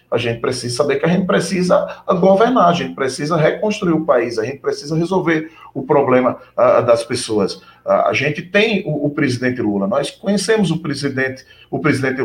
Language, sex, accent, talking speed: Portuguese, male, Brazilian, 170 wpm